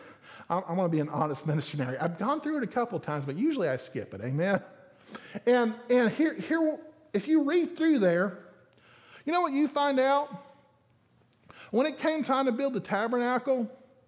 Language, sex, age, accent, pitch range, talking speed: English, male, 40-59, American, 215-295 Hz, 190 wpm